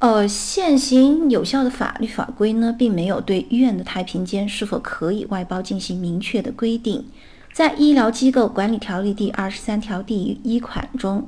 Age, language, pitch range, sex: 50-69, Chinese, 200-255 Hz, female